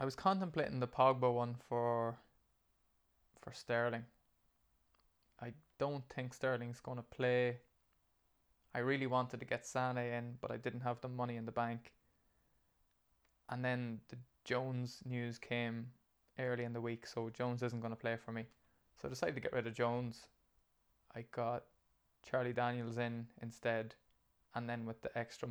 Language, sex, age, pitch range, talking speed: English, male, 20-39, 115-125 Hz, 160 wpm